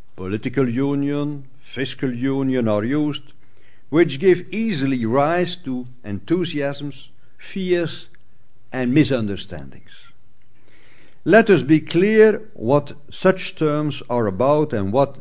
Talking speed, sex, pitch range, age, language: 105 wpm, male, 110-160 Hz, 60-79, English